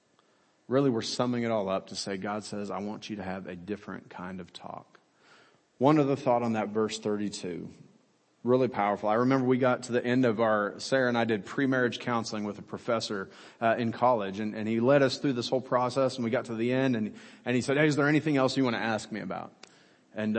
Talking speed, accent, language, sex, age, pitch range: 240 wpm, American, English, male, 30-49, 110-130 Hz